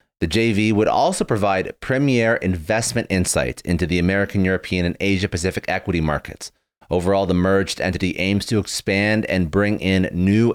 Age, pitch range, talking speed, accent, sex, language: 30-49, 90-105 Hz, 155 wpm, American, male, English